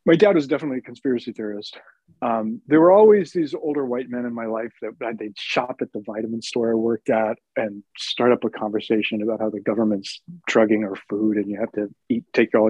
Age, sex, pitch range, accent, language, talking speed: 40-59, male, 110-155 Hz, American, English, 220 wpm